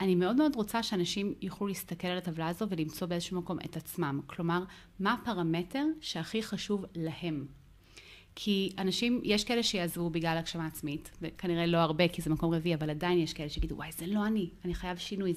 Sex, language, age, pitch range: female, Hebrew, 30-49, 160-190 Hz